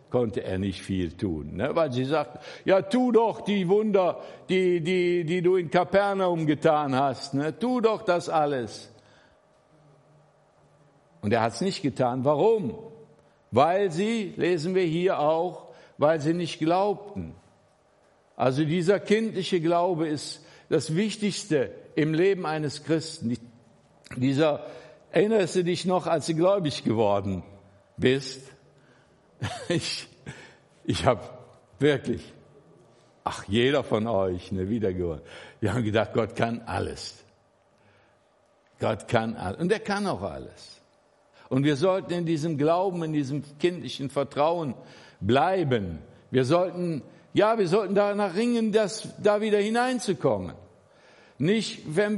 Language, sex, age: German, male, 60-79